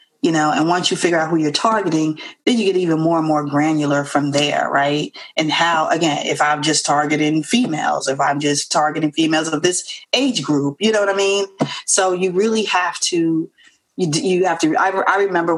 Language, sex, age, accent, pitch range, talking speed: English, female, 30-49, American, 150-225 Hz, 210 wpm